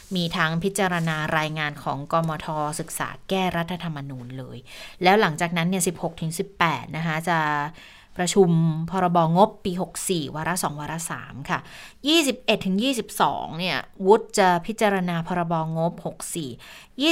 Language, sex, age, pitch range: Thai, female, 20-39, 170-205 Hz